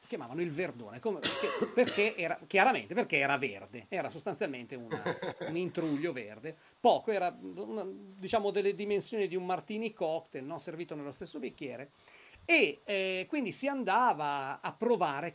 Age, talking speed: 40-59, 155 wpm